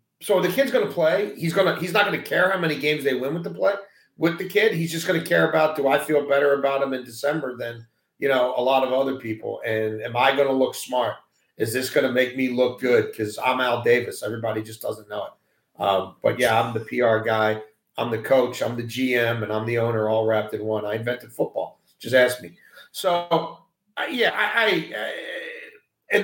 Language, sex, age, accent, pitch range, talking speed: English, male, 40-59, American, 130-180 Hz, 240 wpm